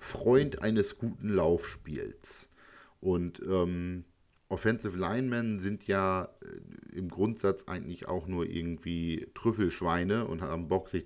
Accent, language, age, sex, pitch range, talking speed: German, German, 50-69, male, 90-115 Hz, 115 wpm